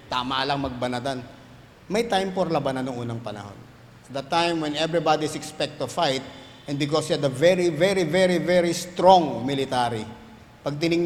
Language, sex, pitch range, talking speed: English, male, 130-165 Hz, 155 wpm